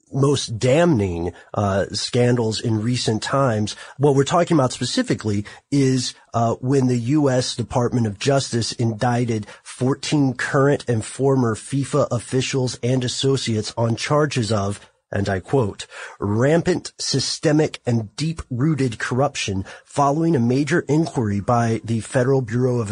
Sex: male